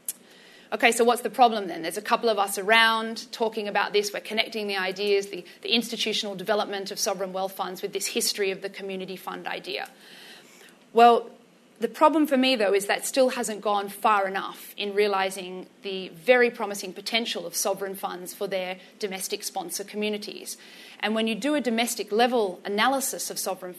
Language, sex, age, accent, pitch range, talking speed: English, female, 30-49, Australian, 195-230 Hz, 180 wpm